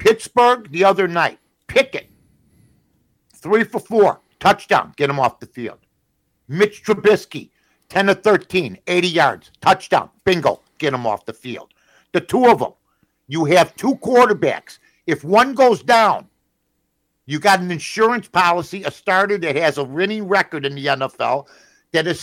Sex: male